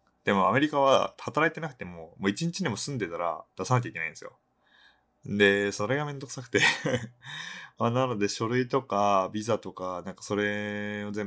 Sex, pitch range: male, 95-120 Hz